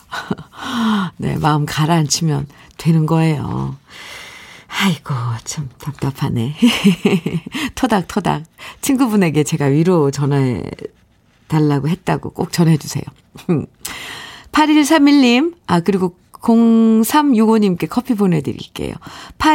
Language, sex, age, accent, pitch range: Korean, female, 50-69, native, 160-235 Hz